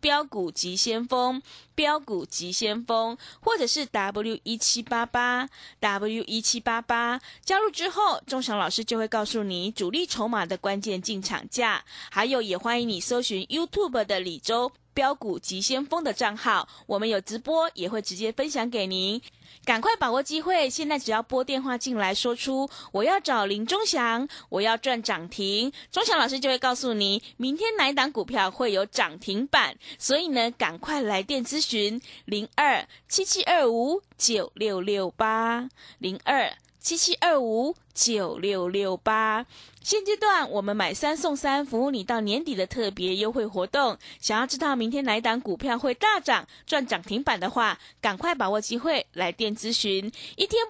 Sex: female